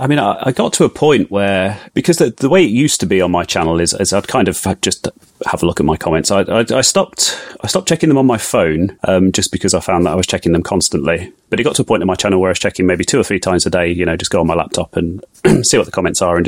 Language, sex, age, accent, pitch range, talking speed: English, male, 30-49, British, 90-110 Hz, 320 wpm